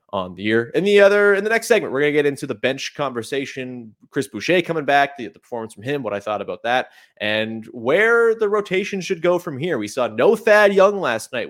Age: 30-49